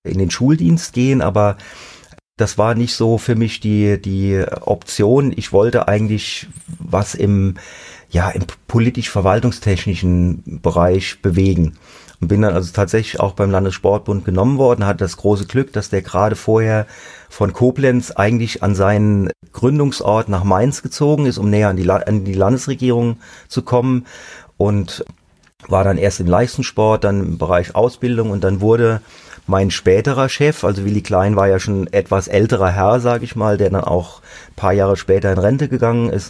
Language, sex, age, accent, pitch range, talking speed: German, male, 40-59, German, 95-120 Hz, 160 wpm